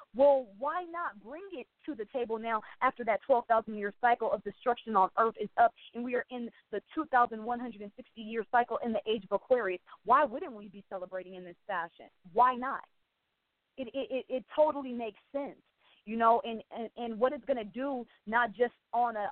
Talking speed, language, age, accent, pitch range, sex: 195 wpm, English, 20-39, American, 205-250 Hz, female